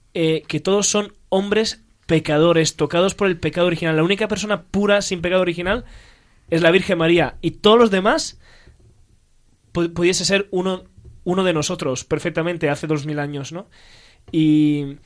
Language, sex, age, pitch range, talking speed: Spanish, male, 20-39, 160-195 Hz, 155 wpm